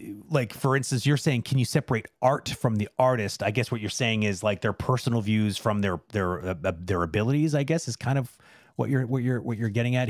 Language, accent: English, American